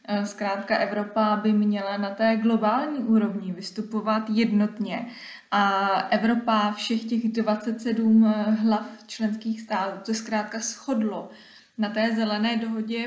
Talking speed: 115 wpm